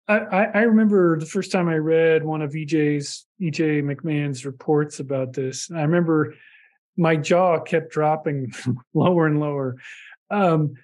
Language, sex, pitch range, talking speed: English, male, 150-185 Hz, 140 wpm